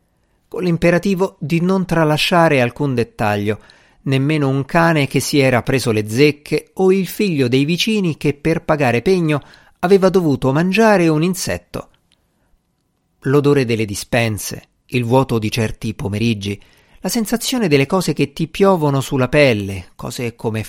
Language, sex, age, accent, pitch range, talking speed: Italian, male, 50-69, native, 115-165 Hz, 140 wpm